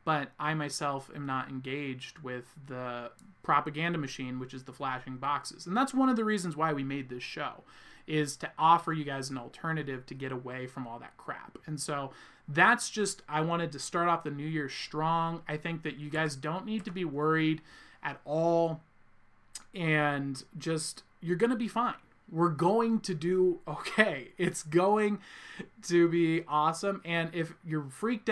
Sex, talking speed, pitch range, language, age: male, 180 wpm, 135-185 Hz, English, 20-39